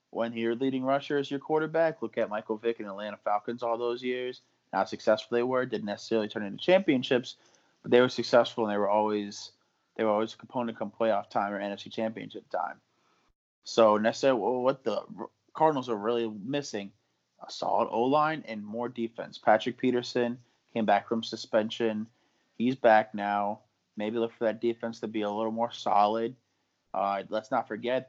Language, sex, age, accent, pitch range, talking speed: English, male, 20-39, American, 105-125 Hz, 180 wpm